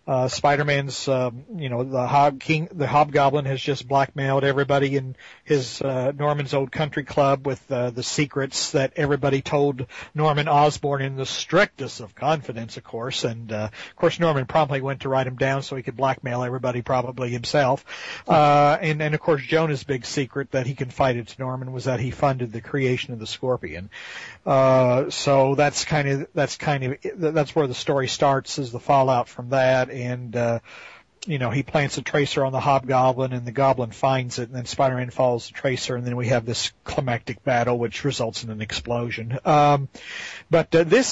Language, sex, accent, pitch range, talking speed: English, male, American, 125-150 Hz, 195 wpm